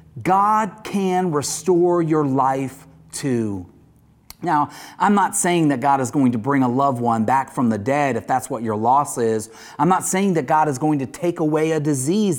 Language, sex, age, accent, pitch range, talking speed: English, male, 40-59, American, 135-195 Hz, 200 wpm